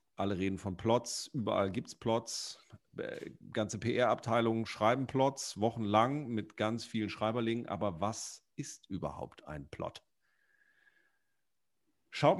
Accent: German